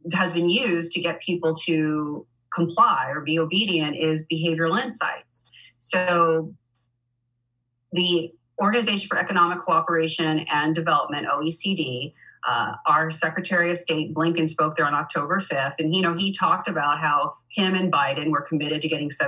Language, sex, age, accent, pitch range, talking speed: English, female, 40-59, American, 155-190 Hz, 150 wpm